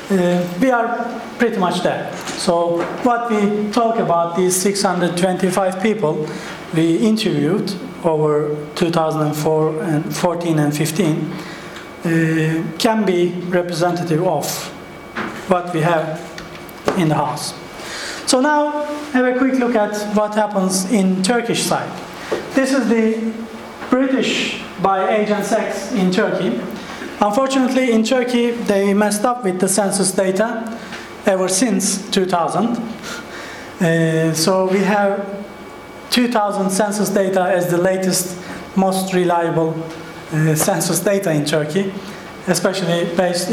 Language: English